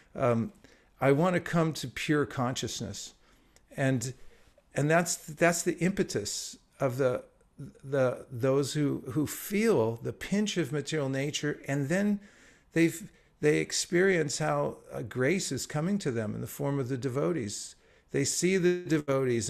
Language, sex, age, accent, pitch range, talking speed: English, male, 50-69, American, 115-155 Hz, 150 wpm